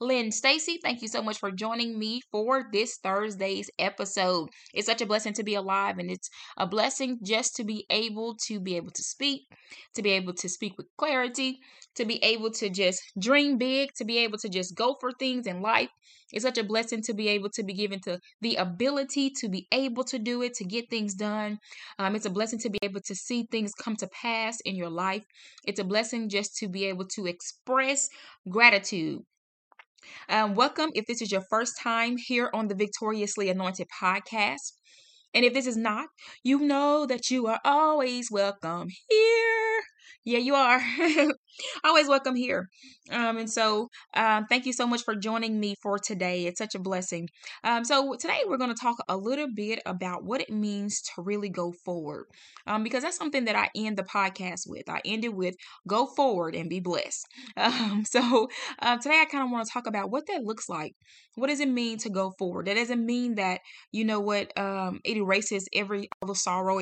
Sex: female